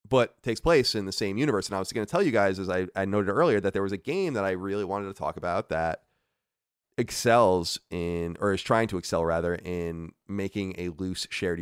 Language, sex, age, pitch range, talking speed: English, male, 30-49, 85-100 Hz, 240 wpm